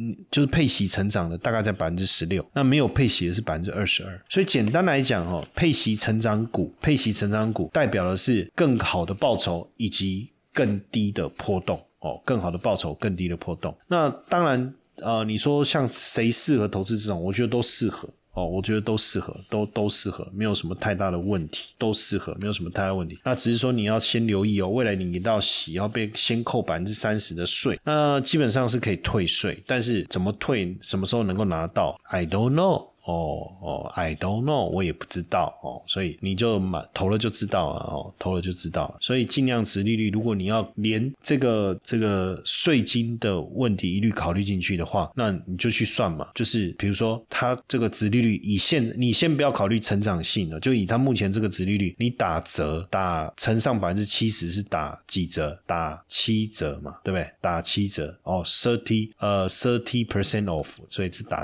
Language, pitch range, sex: Chinese, 95-115 Hz, male